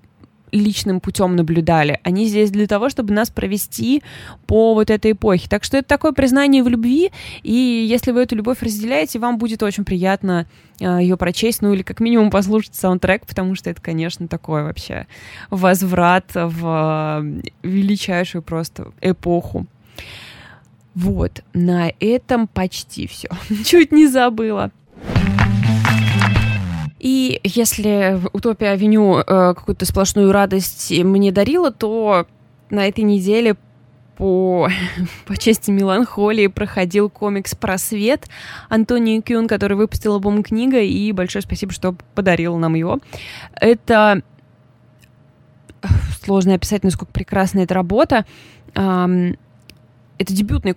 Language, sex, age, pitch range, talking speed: Russian, female, 20-39, 170-220 Hz, 125 wpm